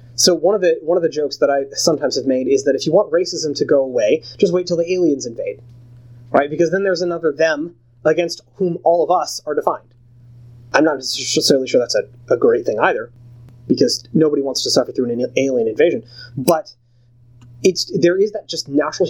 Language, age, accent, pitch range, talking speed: English, 30-49, American, 120-185 Hz, 210 wpm